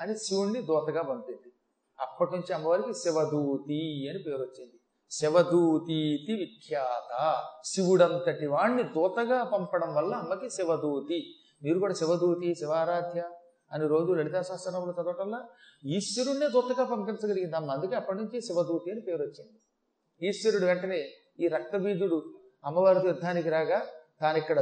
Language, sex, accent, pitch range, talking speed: Telugu, male, native, 155-200 Hz, 110 wpm